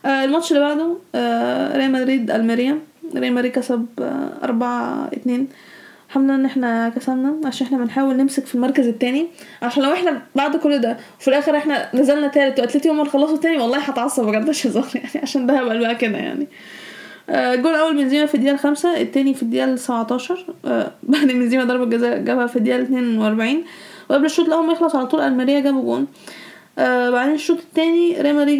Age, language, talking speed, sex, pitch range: 20-39, Arabic, 170 wpm, female, 245-300 Hz